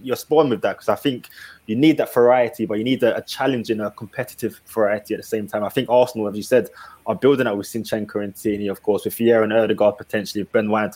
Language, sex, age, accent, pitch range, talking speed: English, male, 20-39, British, 115-135 Hz, 255 wpm